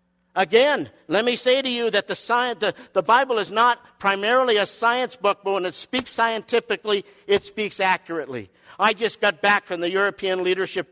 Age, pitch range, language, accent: 50-69, 175-220 Hz, English, American